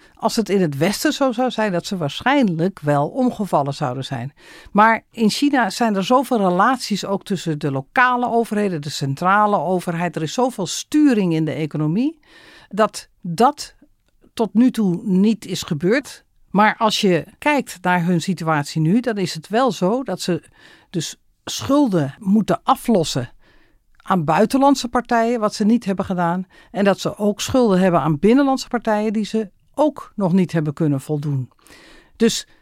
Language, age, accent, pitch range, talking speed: Dutch, 50-69, Dutch, 170-240 Hz, 165 wpm